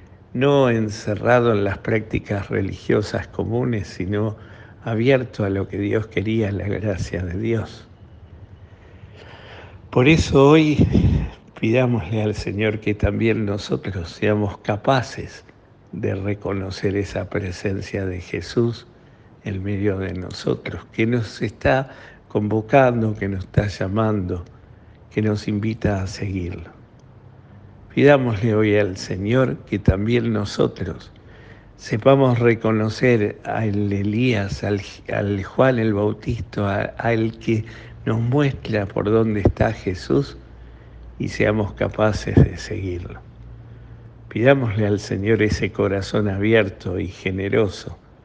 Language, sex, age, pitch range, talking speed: Spanish, male, 60-79, 100-115 Hz, 110 wpm